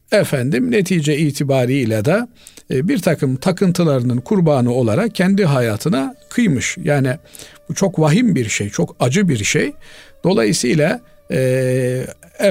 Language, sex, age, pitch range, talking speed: Turkish, male, 50-69, 125-165 Hz, 120 wpm